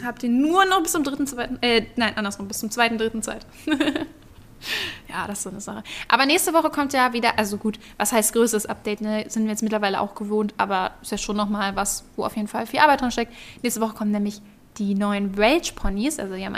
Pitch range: 210-250 Hz